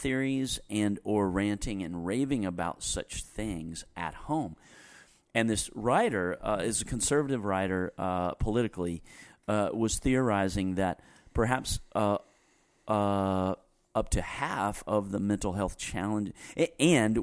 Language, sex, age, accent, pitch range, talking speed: English, male, 40-59, American, 95-110 Hz, 130 wpm